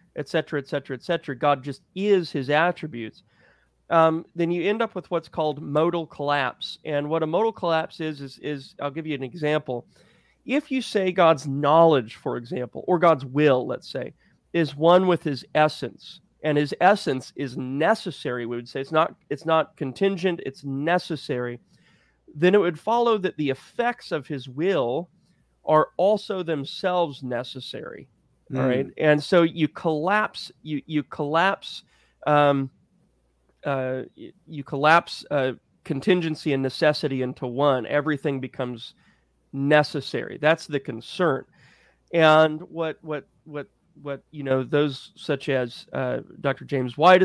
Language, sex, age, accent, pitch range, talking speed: English, male, 30-49, American, 135-165 Hz, 145 wpm